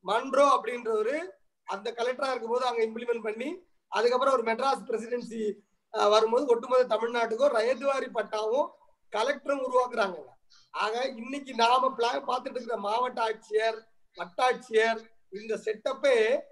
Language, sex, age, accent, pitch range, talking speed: Tamil, male, 30-49, native, 220-275 Hz, 85 wpm